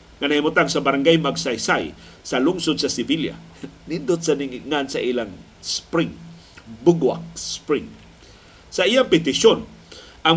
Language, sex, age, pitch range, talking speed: Filipino, male, 50-69, 140-185 Hz, 115 wpm